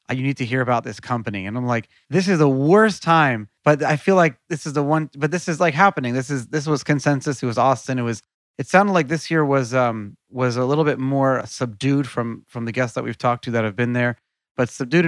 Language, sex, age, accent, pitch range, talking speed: English, male, 30-49, American, 120-150 Hz, 260 wpm